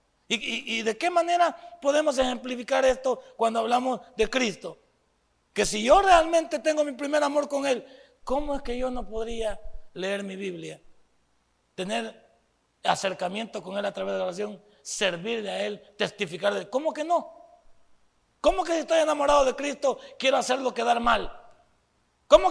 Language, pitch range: Spanish, 200-285 Hz